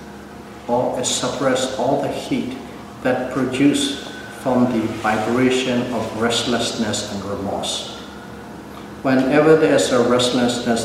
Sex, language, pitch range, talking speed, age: male, English, 110-125 Hz, 105 wpm, 60-79